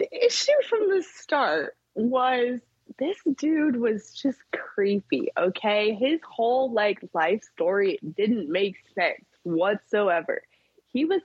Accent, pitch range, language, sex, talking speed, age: American, 185-255 Hz, English, female, 125 wpm, 20-39